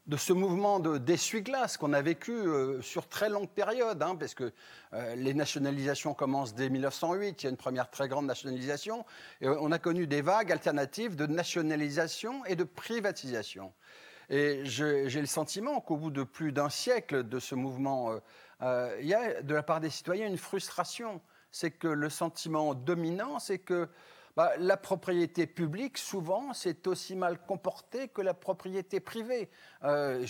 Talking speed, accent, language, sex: 175 wpm, French, French, male